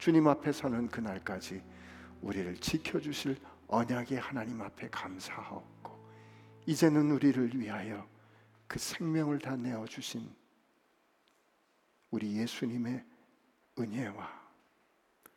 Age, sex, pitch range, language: 60-79, male, 110-145 Hz, Korean